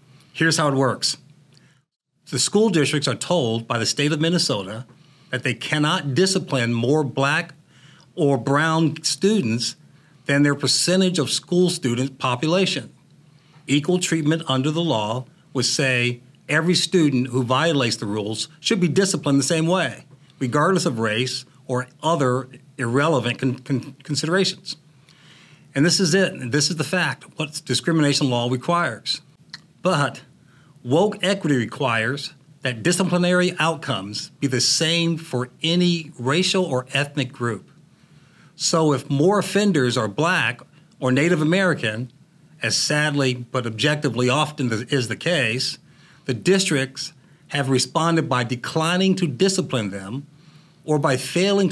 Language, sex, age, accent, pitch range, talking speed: English, male, 50-69, American, 130-165 Hz, 135 wpm